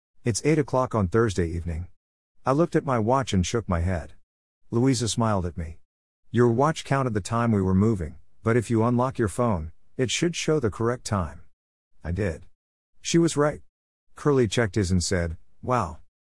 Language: English